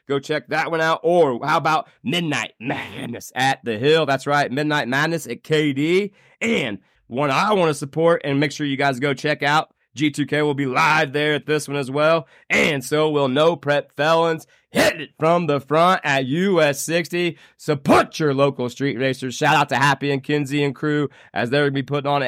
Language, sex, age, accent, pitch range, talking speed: English, male, 30-49, American, 140-175 Hz, 205 wpm